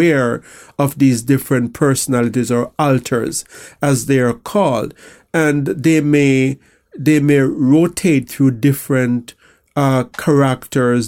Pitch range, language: 125-150 Hz, English